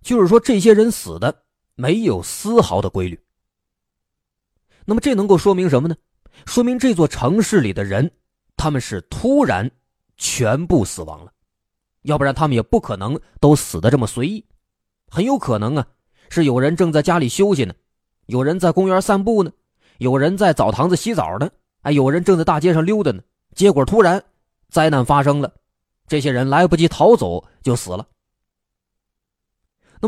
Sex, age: male, 20-39